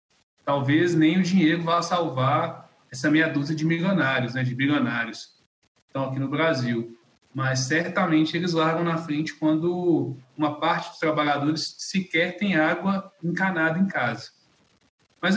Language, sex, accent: Portuguese, male, Brazilian